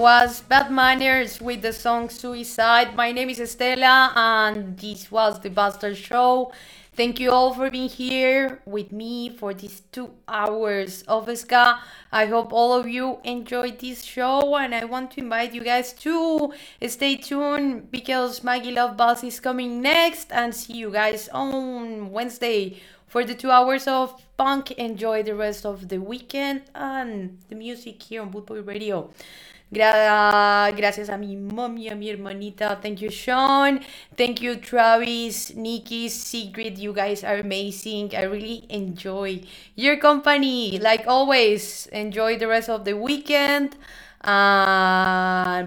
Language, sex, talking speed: English, female, 150 wpm